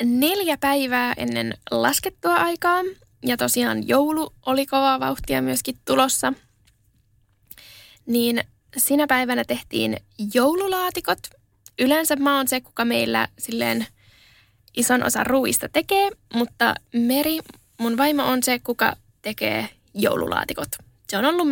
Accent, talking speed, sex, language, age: native, 115 wpm, female, Finnish, 10-29